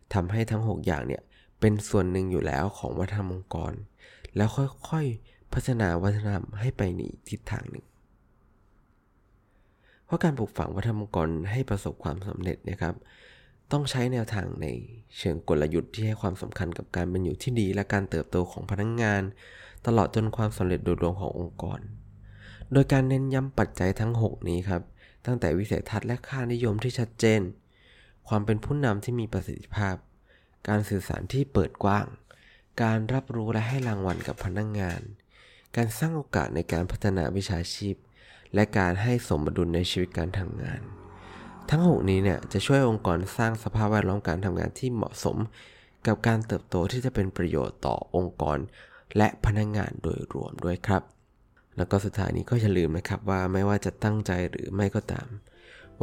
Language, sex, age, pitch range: Thai, male, 20-39, 95-115 Hz